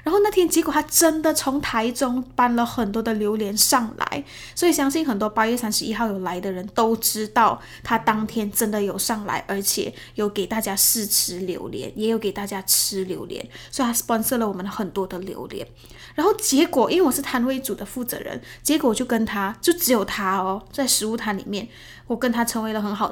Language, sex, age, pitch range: Chinese, female, 10-29, 205-255 Hz